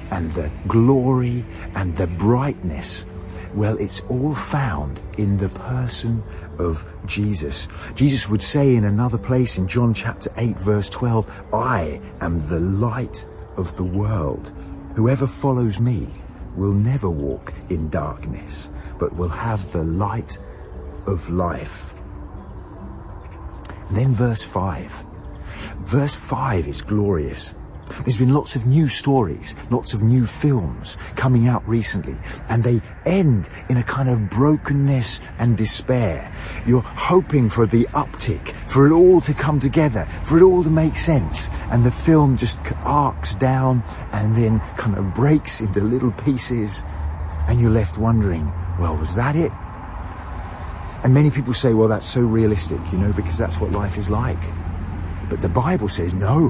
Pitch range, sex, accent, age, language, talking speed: 85-125 Hz, male, British, 40-59, English, 150 wpm